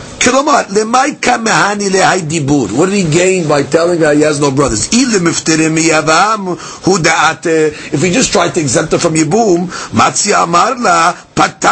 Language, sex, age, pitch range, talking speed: English, male, 50-69, 175-245 Hz, 100 wpm